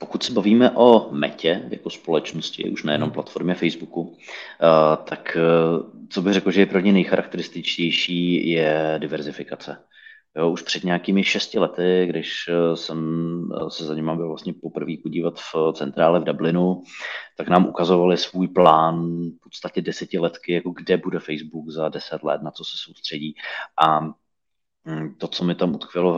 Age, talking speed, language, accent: 30-49, 155 wpm, Czech, native